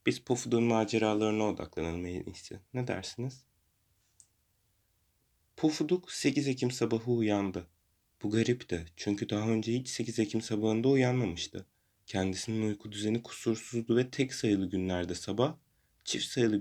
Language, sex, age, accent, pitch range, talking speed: Turkish, male, 30-49, native, 95-120 Hz, 115 wpm